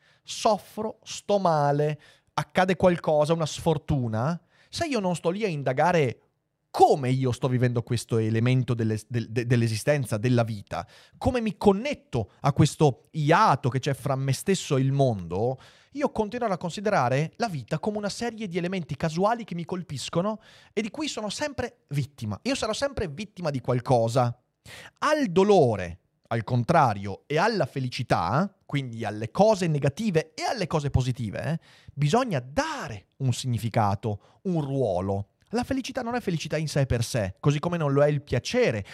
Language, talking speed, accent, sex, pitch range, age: Italian, 155 wpm, native, male, 125-195 Hz, 30-49